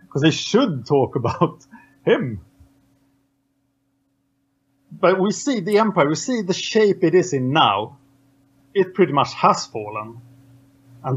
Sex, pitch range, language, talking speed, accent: male, 130-165 Hz, English, 135 wpm, Norwegian